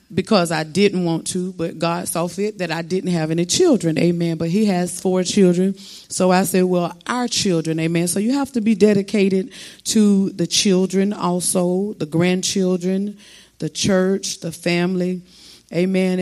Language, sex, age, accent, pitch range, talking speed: English, female, 40-59, American, 160-190 Hz, 165 wpm